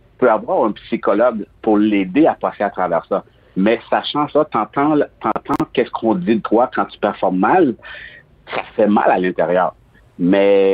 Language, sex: French, male